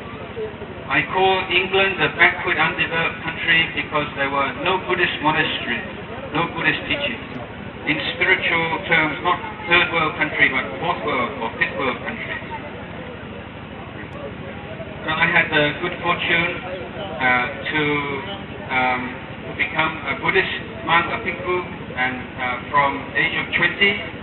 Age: 60-79